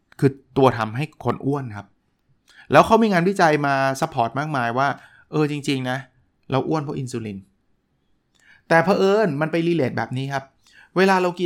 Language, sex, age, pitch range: Thai, male, 20-39, 120-160 Hz